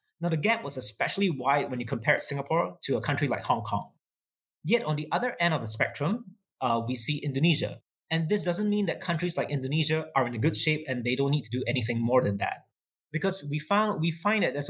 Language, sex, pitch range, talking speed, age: English, male, 130-170 Hz, 235 wpm, 20-39